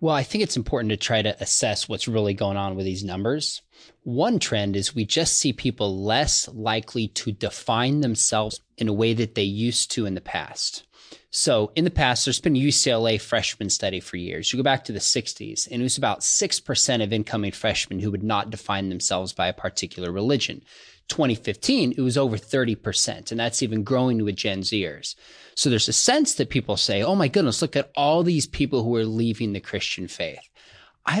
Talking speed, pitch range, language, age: 205 wpm, 105-140 Hz, English, 20-39